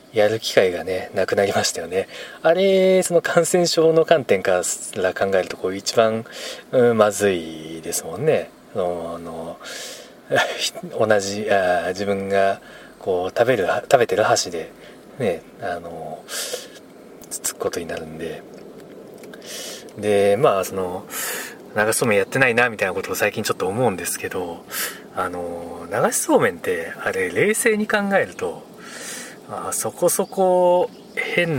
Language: Japanese